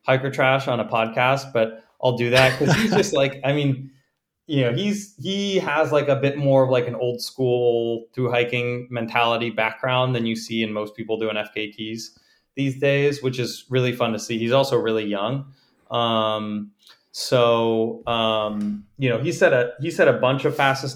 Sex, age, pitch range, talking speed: male, 20-39, 115-135 Hz, 190 wpm